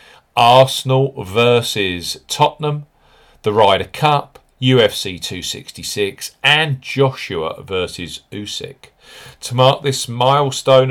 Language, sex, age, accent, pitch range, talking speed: English, male, 40-59, British, 100-130 Hz, 90 wpm